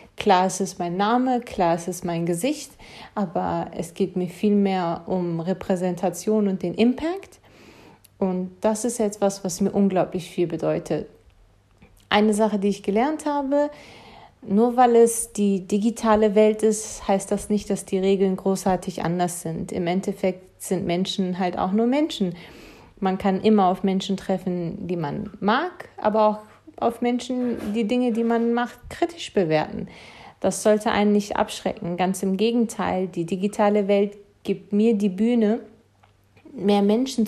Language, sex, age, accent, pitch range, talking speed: German, female, 30-49, German, 185-225 Hz, 160 wpm